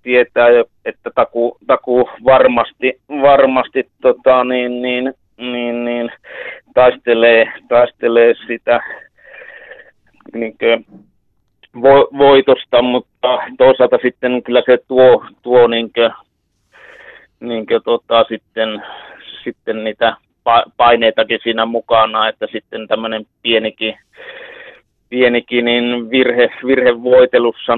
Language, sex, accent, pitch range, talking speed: Finnish, male, native, 110-130 Hz, 90 wpm